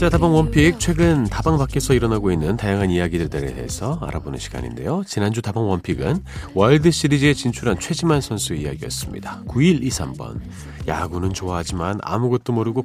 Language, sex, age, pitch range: Korean, male, 40-59, 90-135 Hz